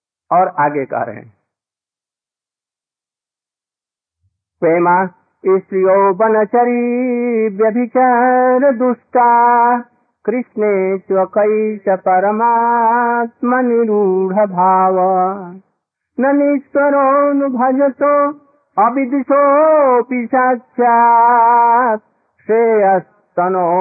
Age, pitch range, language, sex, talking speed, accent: 50-69, 185-245 Hz, Hindi, male, 45 wpm, native